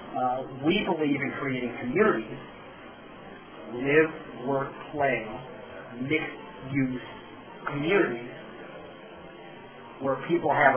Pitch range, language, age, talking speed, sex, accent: 125-155 Hz, English, 40-59, 65 wpm, male, American